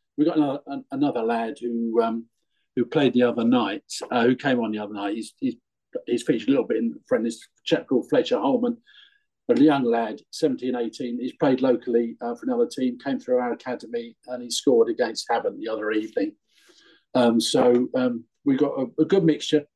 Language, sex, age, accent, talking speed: English, male, 50-69, British, 195 wpm